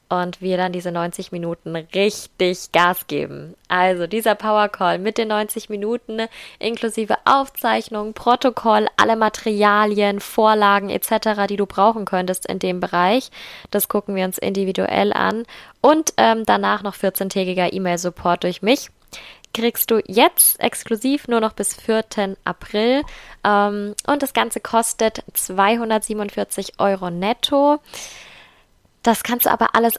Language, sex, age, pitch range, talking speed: German, female, 20-39, 190-225 Hz, 130 wpm